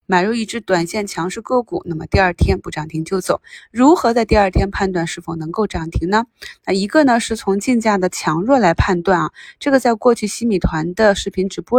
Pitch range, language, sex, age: 175-235 Hz, Chinese, female, 20-39